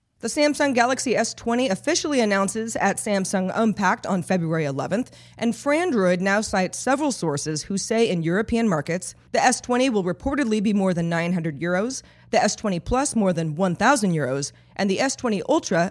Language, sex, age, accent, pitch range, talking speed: English, female, 30-49, American, 175-225 Hz, 155 wpm